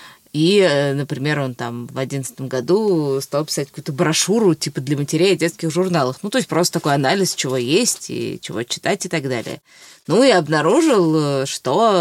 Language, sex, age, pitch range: Russian, female, 20-39, 145-170 Hz